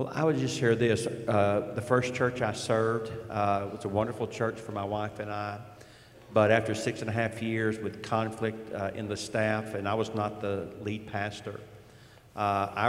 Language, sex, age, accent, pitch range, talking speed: English, male, 50-69, American, 100-115 Hz, 200 wpm